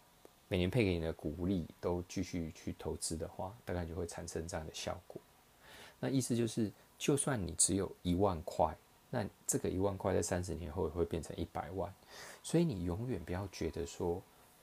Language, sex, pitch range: Chinese, male, 85-110 Hz